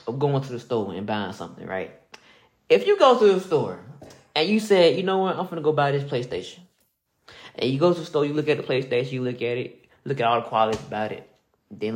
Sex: male